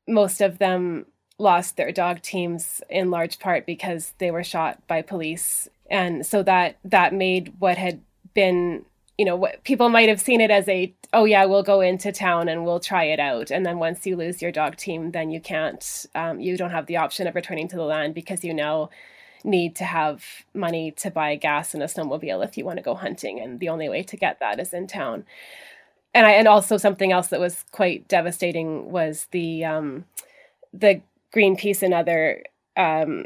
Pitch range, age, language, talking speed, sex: 165-195 Hz, 20-39, English, 205 wpm, female